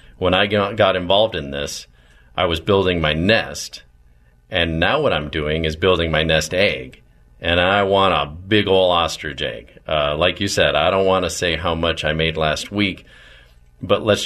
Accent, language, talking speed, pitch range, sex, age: American, English, 195 wpm, 75-100 Hz, male, 40-59